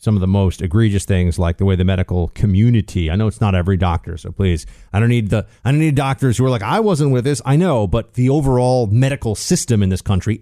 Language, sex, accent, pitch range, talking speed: English, male, American, 95-115 Hz, 260 wpm